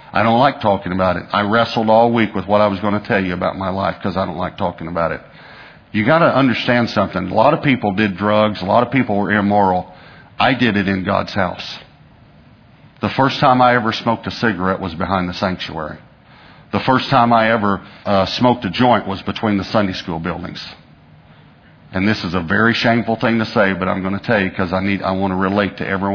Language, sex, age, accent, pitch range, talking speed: English, male, 50-69, American, 95-130 Hz, 230 wpm